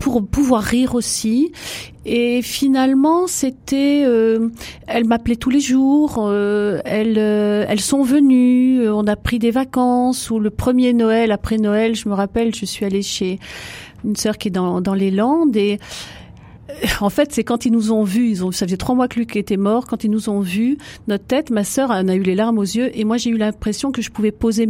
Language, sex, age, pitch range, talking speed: French, female, 40-59, 205-255 Hz, 220 wpm